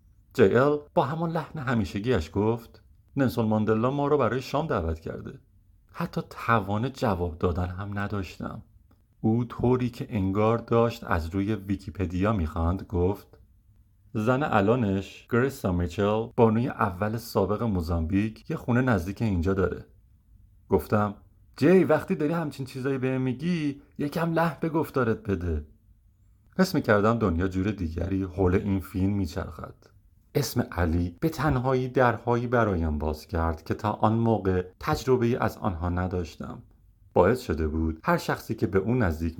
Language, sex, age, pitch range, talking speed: Persian, male, 40-59, 95-125 Hz, 135 wpm